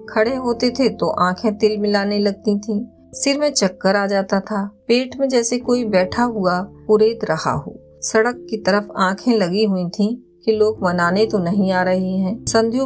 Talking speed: 180 wpm